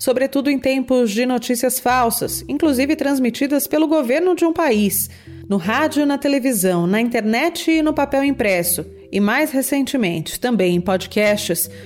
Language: Portuguese